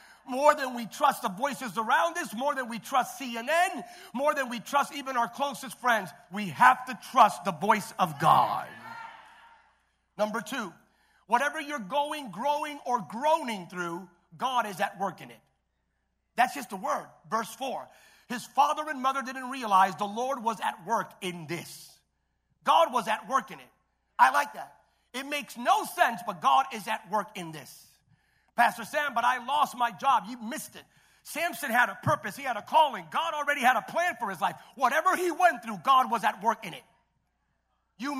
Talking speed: 190 wpm